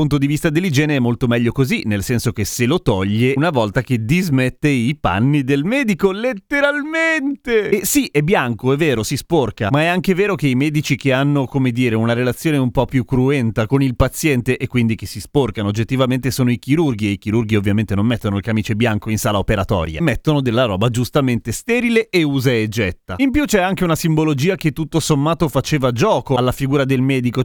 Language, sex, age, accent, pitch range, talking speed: Italian, male, 30-49, native, 115-150 Hz, 210 wpm